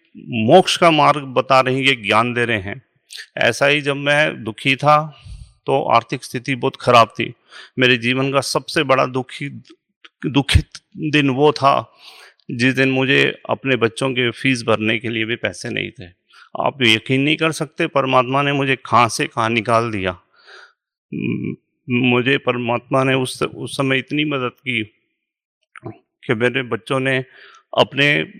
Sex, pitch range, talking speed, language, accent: male, 115-140 Hz, 155 wpm, Hindi, native